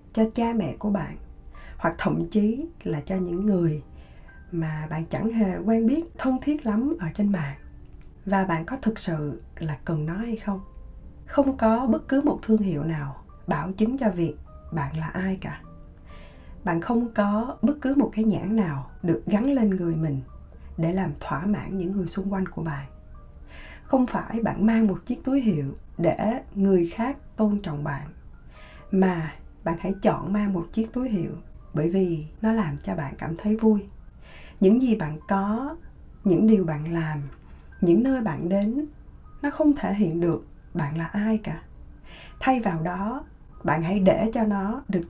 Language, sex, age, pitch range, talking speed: Vietnamese, female, 20-39, 160-220 Hz, 180 wpm